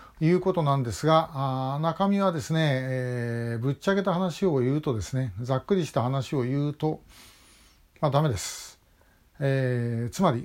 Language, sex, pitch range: Japanese, male, 125-165 Hz